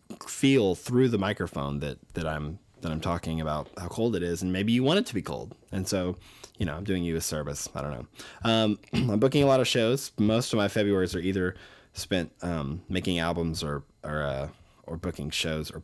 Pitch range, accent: 80-110 Hz, American